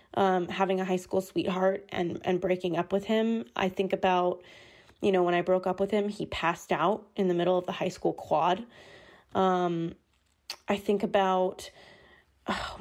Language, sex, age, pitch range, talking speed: English, female, 20-39, 185-210 Hz, 185 wpm